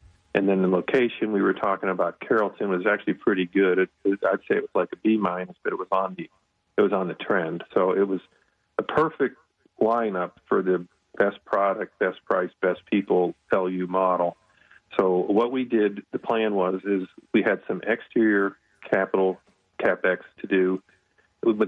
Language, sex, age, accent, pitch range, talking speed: English, male, 40-59, American, 95-100 Hz, 165 wpm